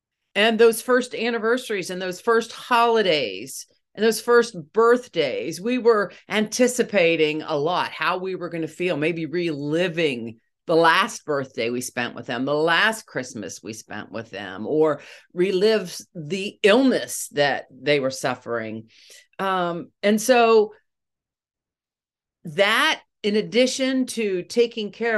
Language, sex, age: English, female, 50-69